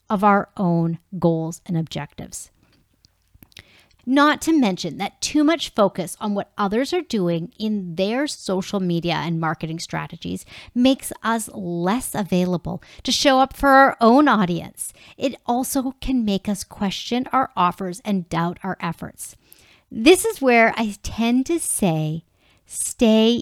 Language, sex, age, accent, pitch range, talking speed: English, female, 40-59, American, 170-230 Hz, 145 wpm